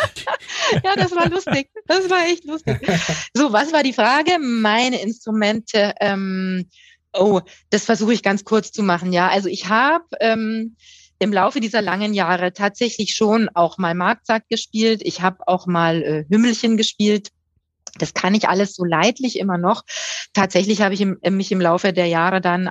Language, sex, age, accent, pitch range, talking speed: German, female, 30-49, German, 185-230 Hz, 165 wpm